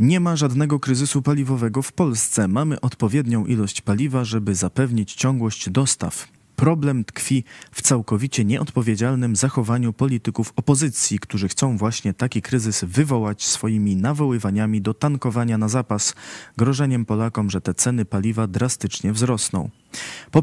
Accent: native